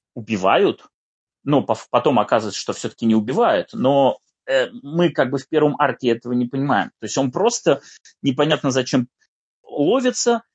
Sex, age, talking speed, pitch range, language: male, 20-39, 140 wpm, 155-215 Hz, Russian